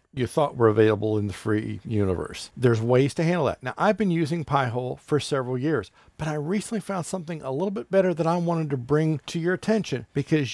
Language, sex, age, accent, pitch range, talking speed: English, male, 50-69, American, 115-155 Hz, 220 wpm